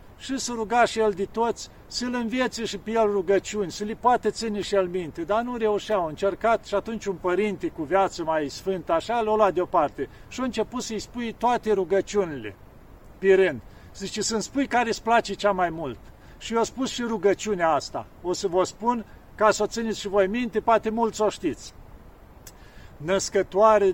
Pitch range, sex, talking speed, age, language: 180-225 Hz, male, 190 wpm, 50-69, Romanian